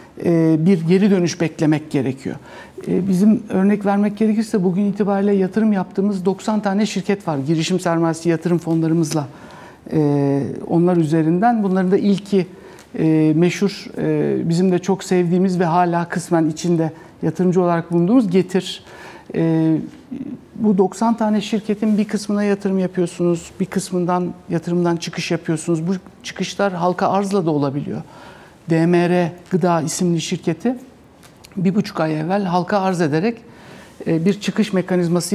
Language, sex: Turkish, male